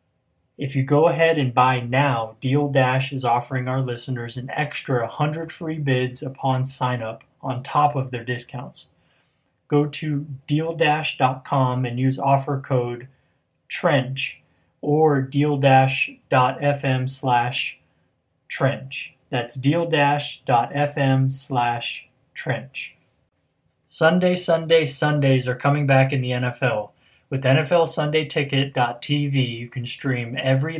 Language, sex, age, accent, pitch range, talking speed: English, male, 20-39, American, 125-145 Hz, 105 wpm